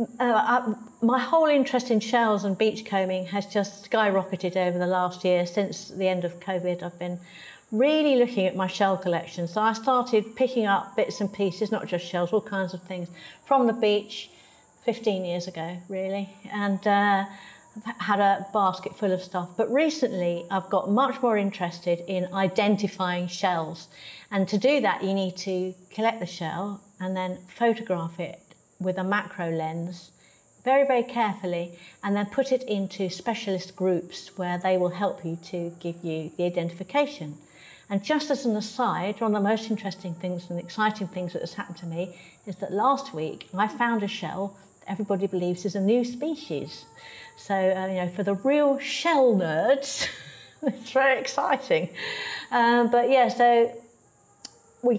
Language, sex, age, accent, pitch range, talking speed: English, female, 50-69, British, 180-230 Hz, 170 wpm